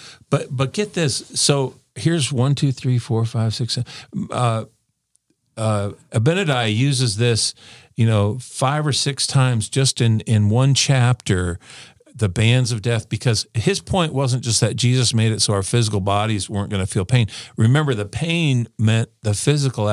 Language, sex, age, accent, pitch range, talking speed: English, male, 50-69, American, 100-125 Hz, 170 wpm